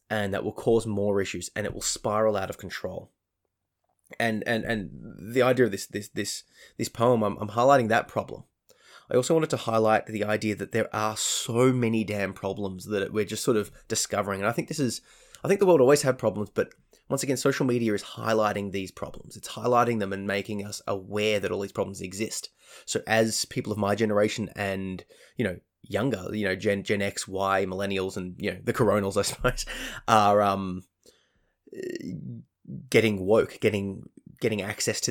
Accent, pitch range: Australian, 100-120 Hz